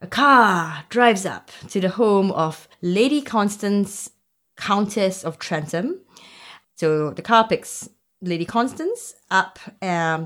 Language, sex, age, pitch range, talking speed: English, female, 20-39, 160-215 Hz, 125 wpm